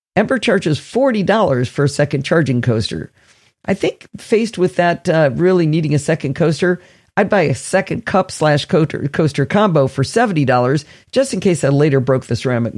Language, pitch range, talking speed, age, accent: English, 135-190 Hz, 175 wpm, 50-69, American